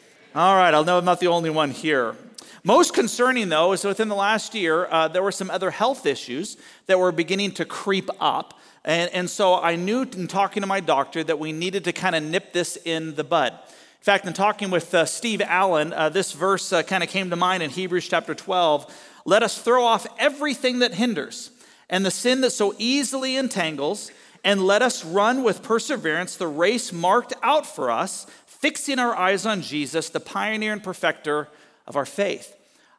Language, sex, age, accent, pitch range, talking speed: English, male, 40-59, American, 165-210 Hz, 205 wpm